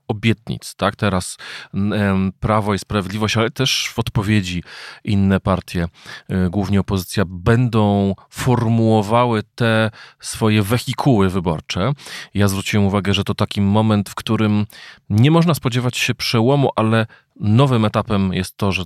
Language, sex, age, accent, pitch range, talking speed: Polish, male, 40-59, native, 95-115 Hz, 135 wpm